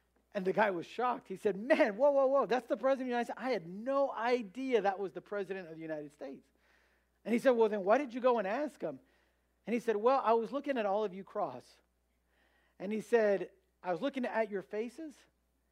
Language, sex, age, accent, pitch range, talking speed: English, male, 50-69, American, 175-240 Hz, 240 wpm